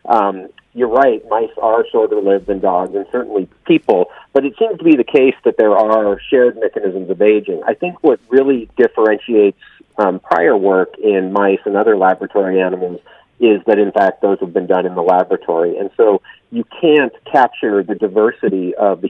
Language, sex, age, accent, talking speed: English, male, 40-59, American, 185 wpm